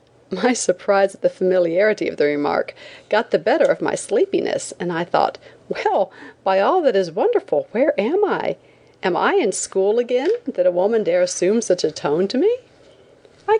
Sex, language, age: female, English, 40-59